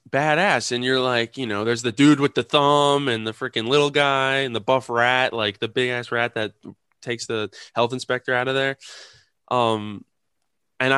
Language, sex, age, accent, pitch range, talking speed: English, male, 20-39, American, 100-125 Hz, 195 wpm